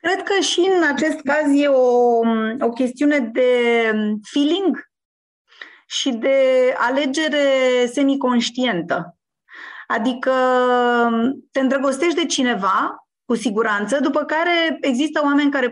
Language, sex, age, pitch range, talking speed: Romanian, female, 30-49, 225-285 Hz, 105 wpm